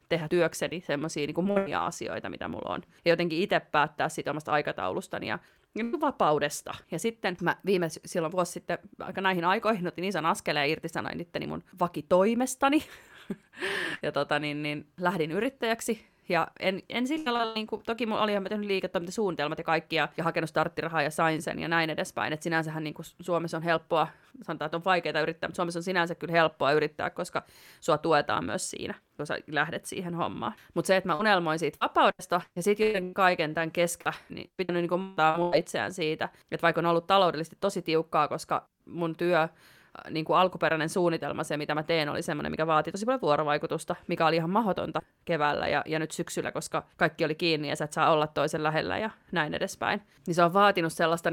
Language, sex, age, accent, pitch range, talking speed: Finnish, female, 30-49, native, 155-190 Hz, 190 wpm